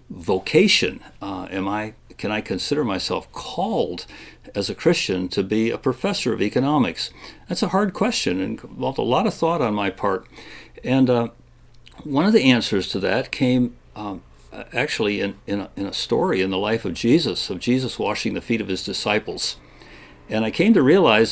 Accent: American